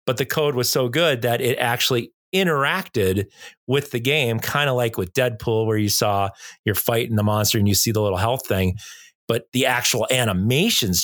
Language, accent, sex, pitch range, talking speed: English, American, male, 110-135 Hz, 200 wpm